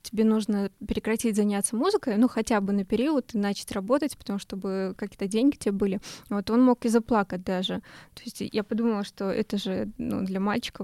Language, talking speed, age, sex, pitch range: Russian, 195 wpm, 20-39, female, 200-235 Hz